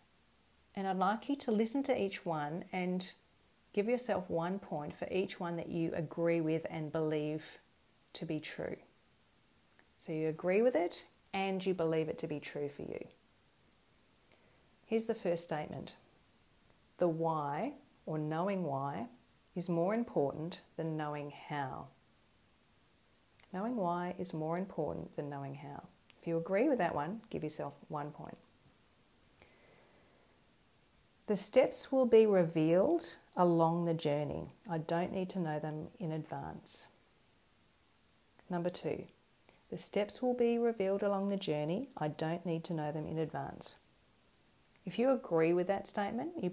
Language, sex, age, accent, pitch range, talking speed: English, female, 40-59, Australian, 155-195 Hz, 145 wpm